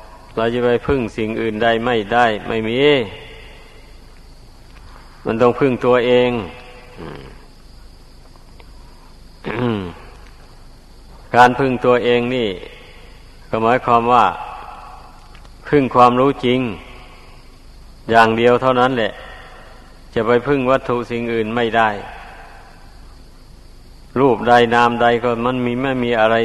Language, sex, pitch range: Thai, male, 110-125 Hz